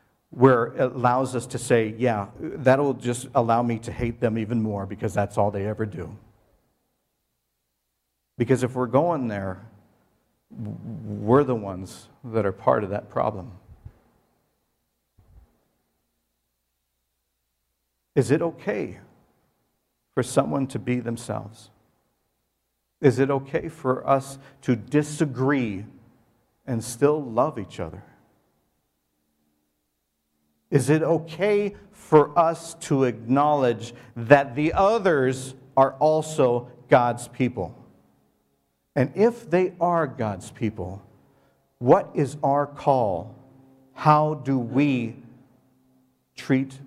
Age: 50-69